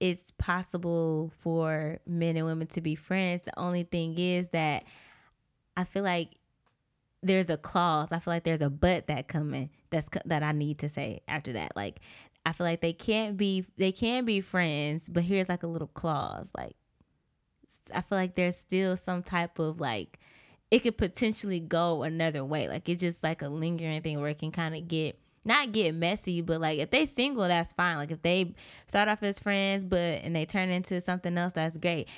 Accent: American